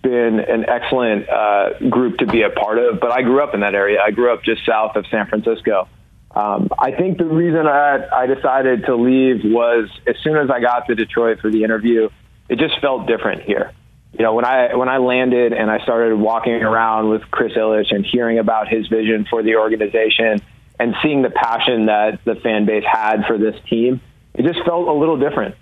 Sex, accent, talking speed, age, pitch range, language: male, American, 215 wpm, 30-49, 110-130 Hz, English